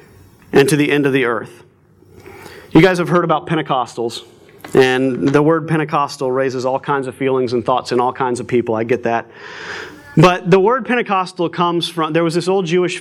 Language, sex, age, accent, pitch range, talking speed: English, male, 30-49, American, 145-190 Hz, 200 wpm